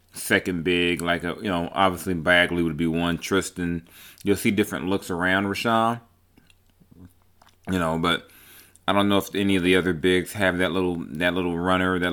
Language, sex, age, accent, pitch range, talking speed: English, male, 30-49, American, 85-95 Hz, 185 wpm